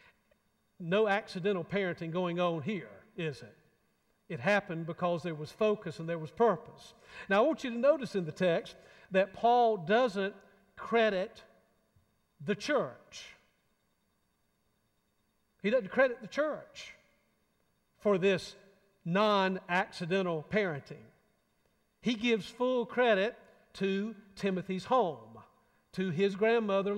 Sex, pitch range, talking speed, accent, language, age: male, 170-210 Hz, 115 wpm, American, English, 50-69